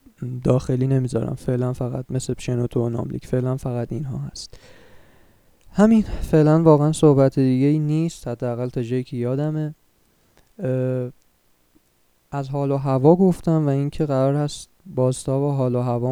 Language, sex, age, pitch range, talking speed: Persian, male, 20-39, 120-140 Hz, 140 wpm